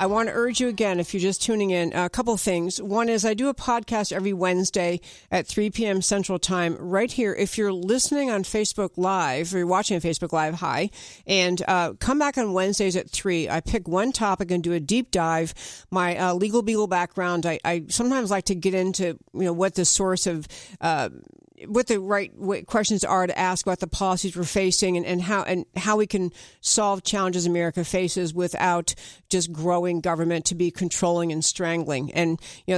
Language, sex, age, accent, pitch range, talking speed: English, female, 50-69, American, 175-205 Hz, 205 wpm